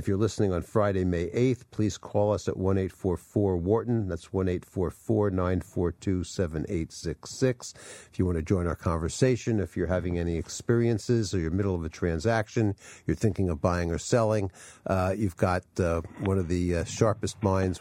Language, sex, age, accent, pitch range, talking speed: English, male, 50-69, American, 90-115 Hz, 170 wpm